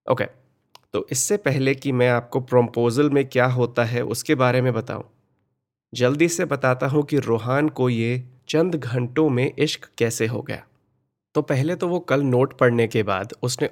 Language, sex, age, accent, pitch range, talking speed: Hindi, male, 30-49, native, 120-145 Hz, 180 wpm